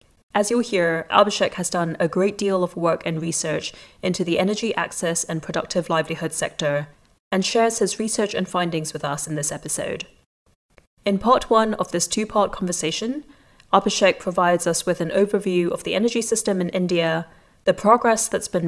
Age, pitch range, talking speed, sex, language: 30-49, 170-210 Hz, 175 wpm, female, English